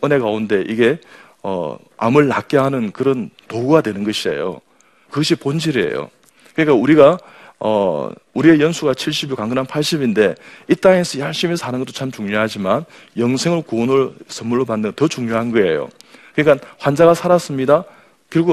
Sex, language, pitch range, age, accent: male, Korean, 110-145 Hz, 40-59, native